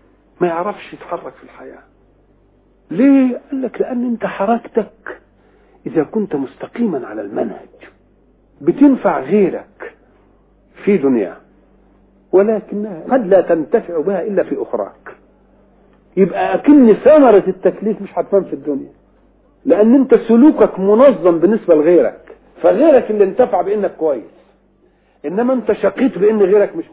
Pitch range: 160-230 Hz